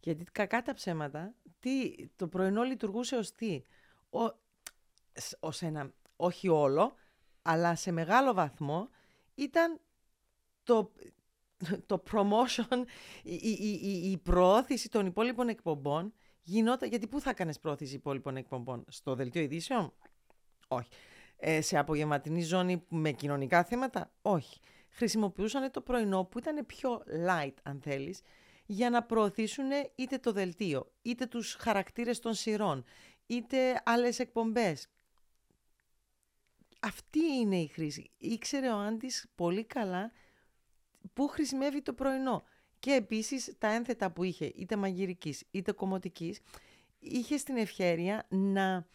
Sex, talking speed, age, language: female, 150 wpm, 40-59, Greek